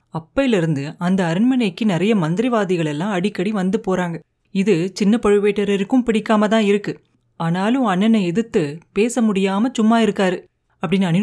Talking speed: 125 wpm